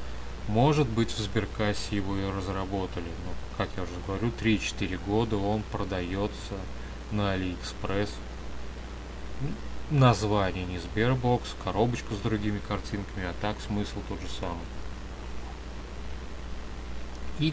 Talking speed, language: 110 wpm, Russian